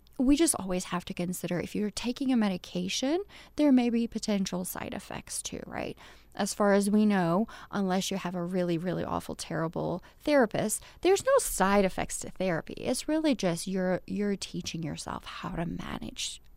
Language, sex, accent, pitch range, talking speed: English, female, American, 180-230 Hz, 175 wpm